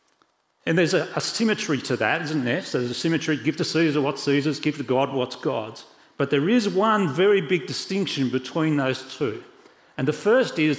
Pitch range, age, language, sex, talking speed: 135-180 Hz, 40-59, English, male, 205 wpm